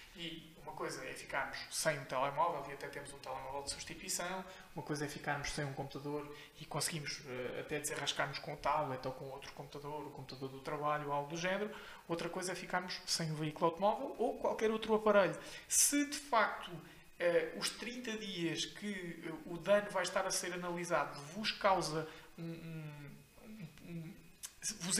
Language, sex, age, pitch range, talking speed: Portuguese, male, 20-39, 160-205 Hz, 180 wpm